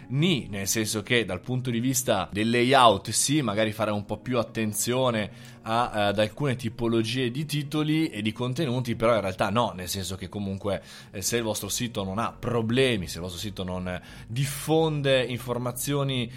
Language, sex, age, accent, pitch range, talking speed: Italian, male, 20-39, native, 105-130 Hz, 180 wpm